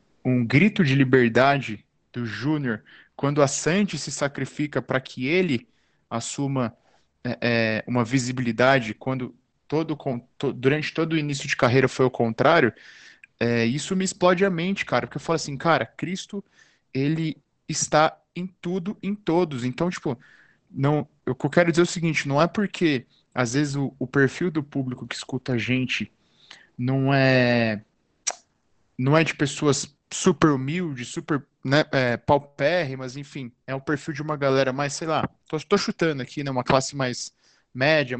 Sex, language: male, Portuguese